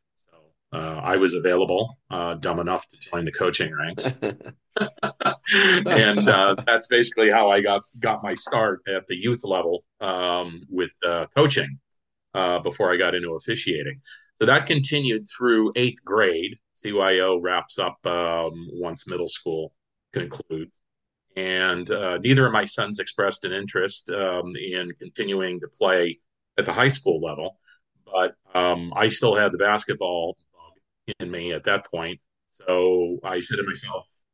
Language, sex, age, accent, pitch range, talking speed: English, male, 40-59, American, 85-110 Hz, 150 wpm